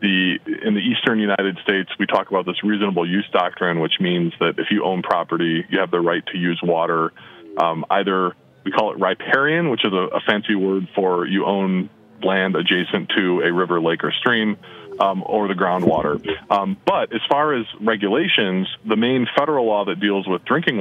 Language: English